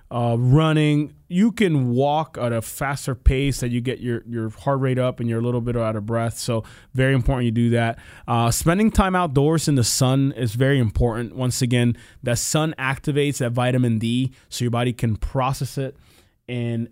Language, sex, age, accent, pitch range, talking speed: English, male, 20-39, American, 115-140 Hz, 200 wpm